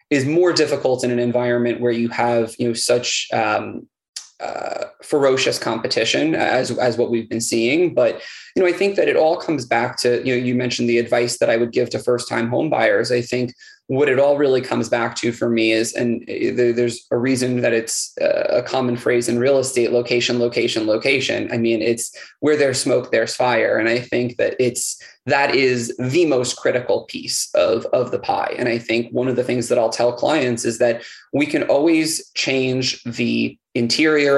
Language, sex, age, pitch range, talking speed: English, male, 20-39, 120-130 Hz, 205 wpm